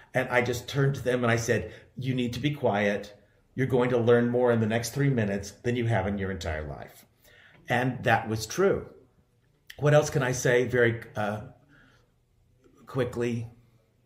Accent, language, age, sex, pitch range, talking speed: American, English, 40-59, male, 100-125 Hz, 185 wpm